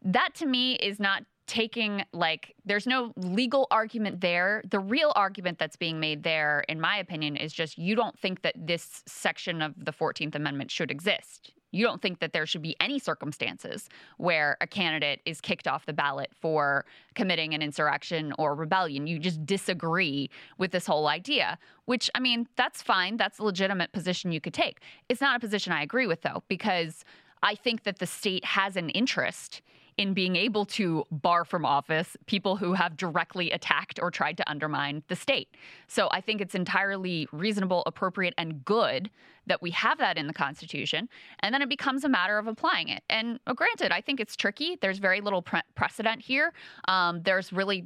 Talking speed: 190 wpm